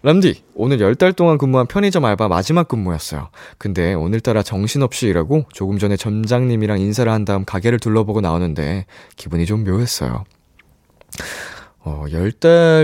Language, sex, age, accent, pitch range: Korean, male, 20-39, native, 95-150 Hz